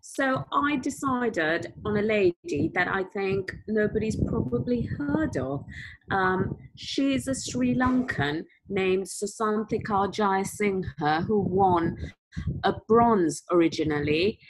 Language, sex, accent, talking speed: English, female, British, 115 wpm